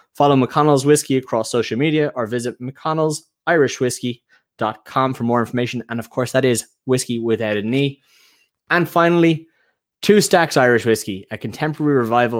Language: English